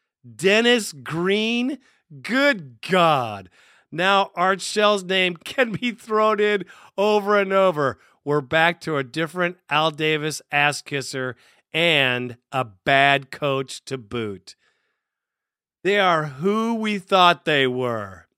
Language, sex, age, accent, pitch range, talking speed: English, male, 40-59, American, 135-190 Hz, 120 wpm